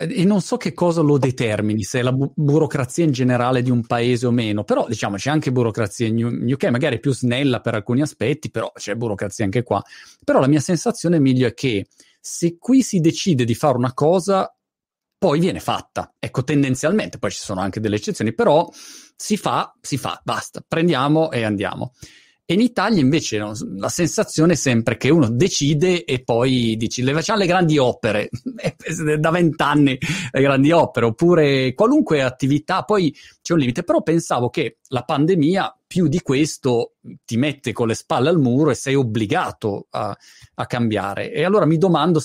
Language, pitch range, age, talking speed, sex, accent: Italian, 120-165 Hz, 30-49, 180 wpm, male, native